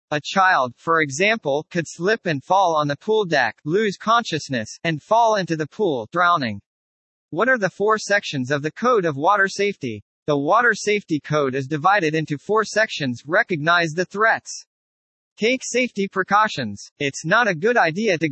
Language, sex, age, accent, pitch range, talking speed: English, male, 40-59, American, 150-215 Hz, 170 wpm